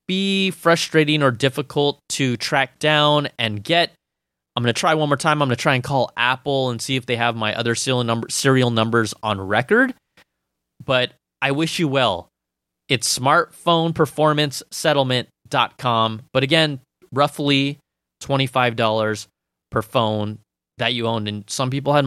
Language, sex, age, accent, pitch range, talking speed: English, male, 20-39, American, 110-150 Hz, 150 wpm